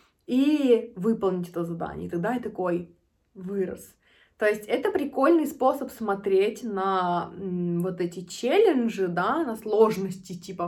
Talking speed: 130 wpm